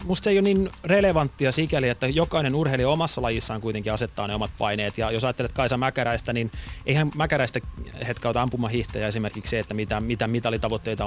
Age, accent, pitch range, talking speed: 30-49, native, 110-140 Hz, 185 wpm